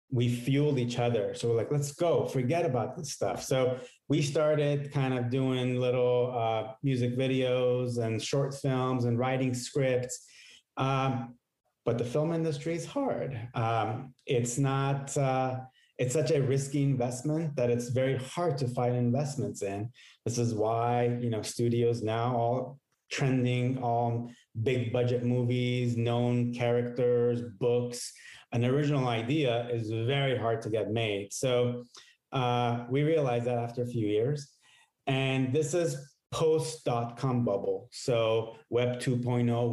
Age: 30-49